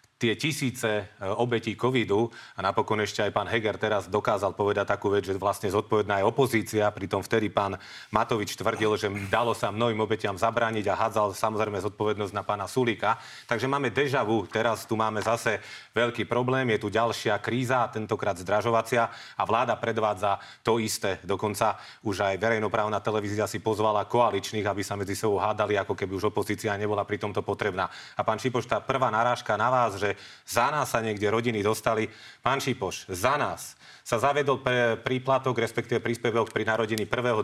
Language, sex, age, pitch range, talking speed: Slovak, male, 40-59, 105-120 Hz, 155 wpm